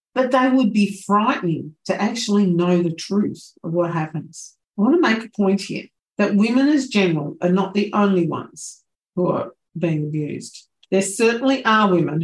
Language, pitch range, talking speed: English, 170-205 Hz, 180 wpm